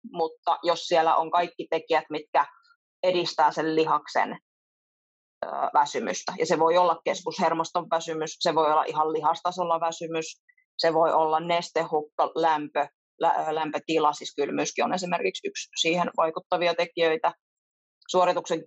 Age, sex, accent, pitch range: 30-49, female, native, 160-180 Hz